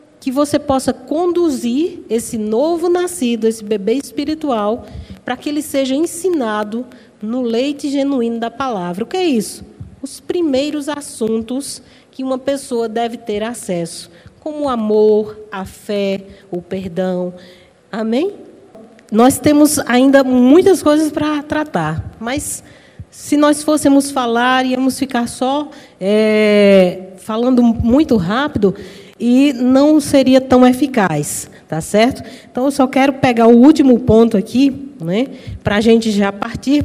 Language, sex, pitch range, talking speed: Portuguese, female, 215-275 Hz, 130 wpm